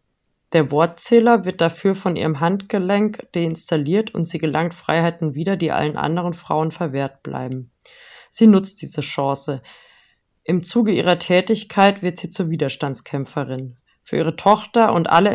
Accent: German